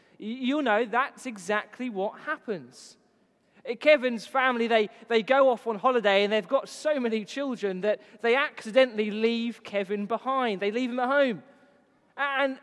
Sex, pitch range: male, 215-280 Hz